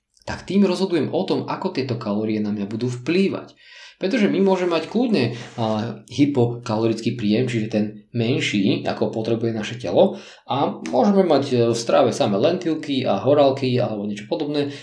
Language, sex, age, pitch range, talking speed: Slovak, male, 20-39, 110-140 Hz, 155 wpm